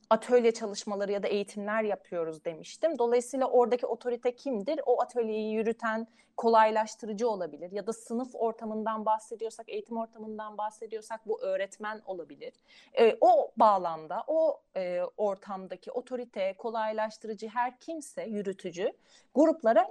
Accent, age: native, 30-49